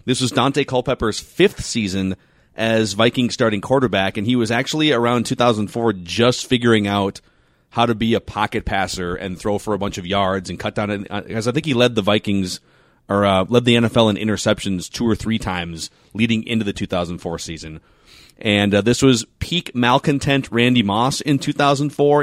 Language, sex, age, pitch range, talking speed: English, male, 30-49, 100-135 Hz, 180 wpm